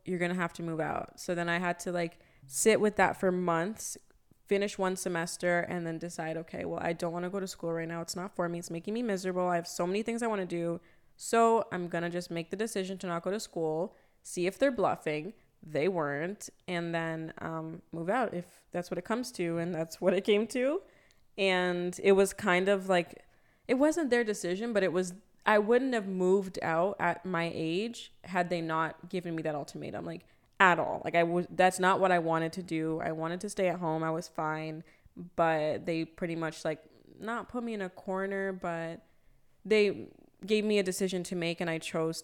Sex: female